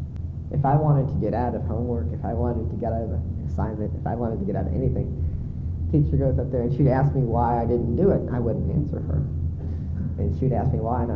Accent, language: American, English